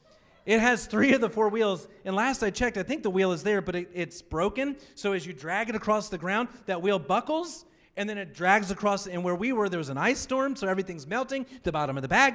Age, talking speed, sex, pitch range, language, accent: 40-59, 260 wpm, male, 185-250 Hz, English, American